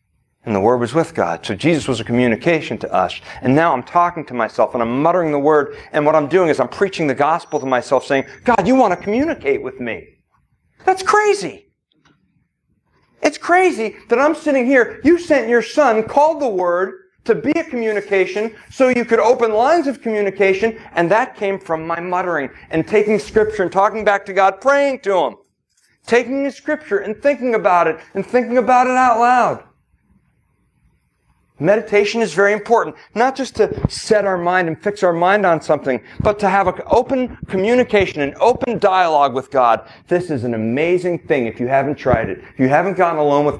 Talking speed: 195 wpm